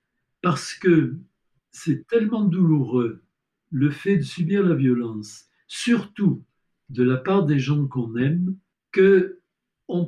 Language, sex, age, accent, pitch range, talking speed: French, male, 60-79, French, 130-170 Hz, 120 wpm